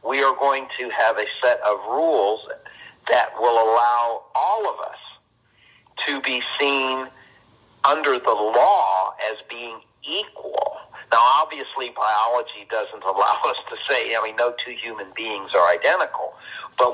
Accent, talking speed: American, 145 wpm